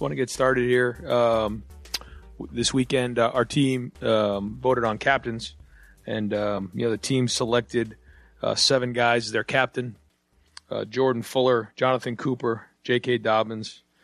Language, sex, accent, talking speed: English, male, American, 150 wpm